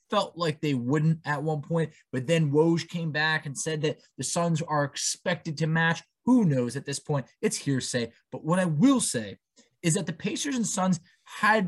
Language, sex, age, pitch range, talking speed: English, male, 20-39, 140-185 Hz, 205 wpm